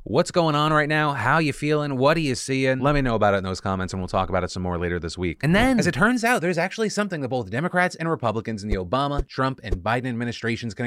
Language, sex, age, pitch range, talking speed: English, male, 30-49, 105-150 Hz, 285 wpm